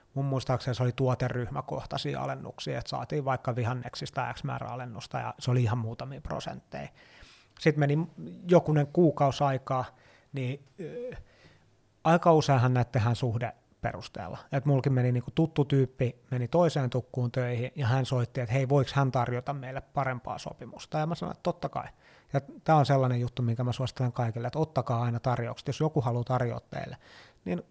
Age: 30-49